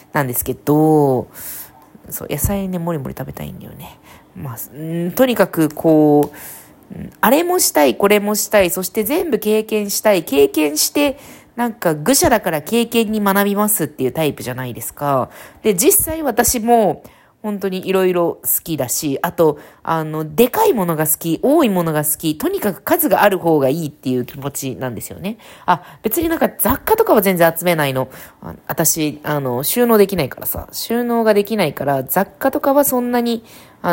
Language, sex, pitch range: Japanese, female, 145-220 Hz